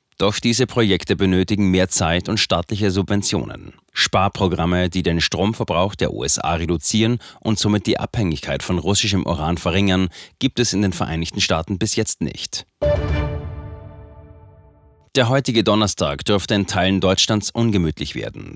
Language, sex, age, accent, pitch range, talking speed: German, male, 30-49, German, 85-110 Hz, 135 wpm